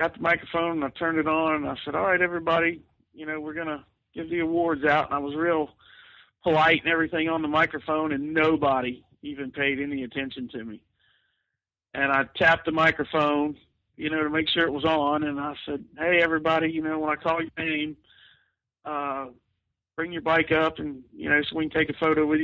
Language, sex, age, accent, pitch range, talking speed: English, male, 50-69, American, 150-195 Hz, 215 wpm